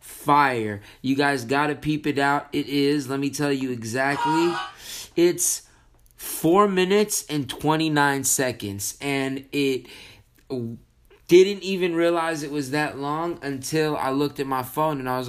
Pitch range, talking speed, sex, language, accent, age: 125-150 Hz, 150 wpm, male, English, American, 20-39